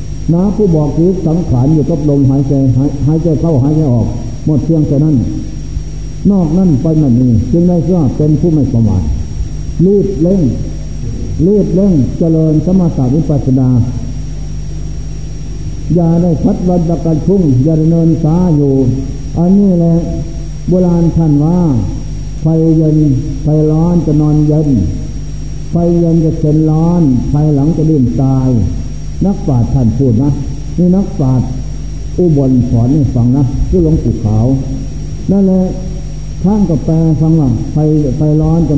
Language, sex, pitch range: Thai, male, 135-165 Hz